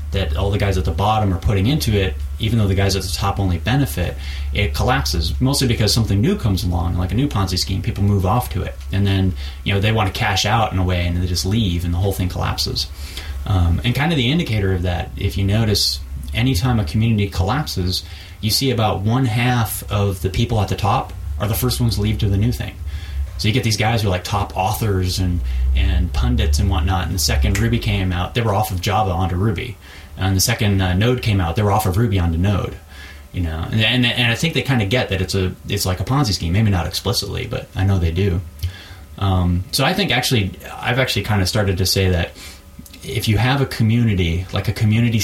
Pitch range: 90-110 Hz